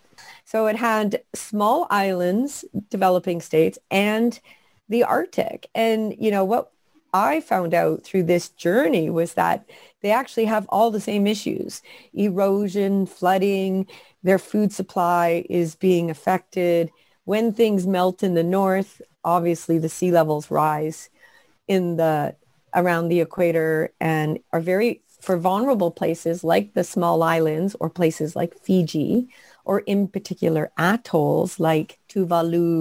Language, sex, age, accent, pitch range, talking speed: English, female, 40-59, American, 165-205 Hz, 135 wpm